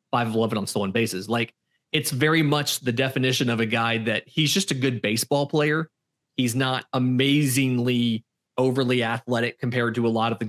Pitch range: 115-130 Hz